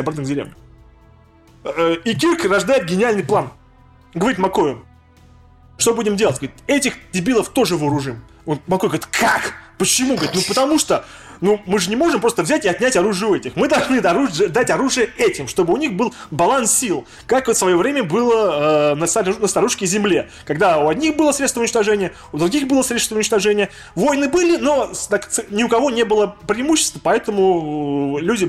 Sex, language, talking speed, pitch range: male, Russian, 170 wpm, 155-255 Hz